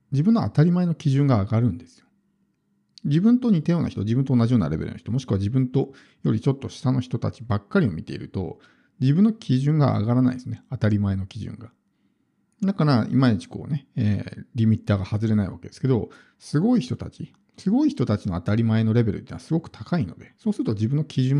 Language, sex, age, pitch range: Japanese, male, 50-69, 110-155 Hz